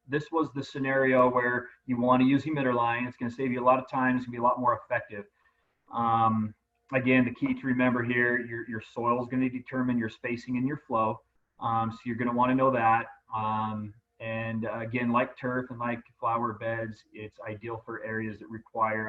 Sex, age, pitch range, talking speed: male, 30-49, 115-140 Hz, 225 wpm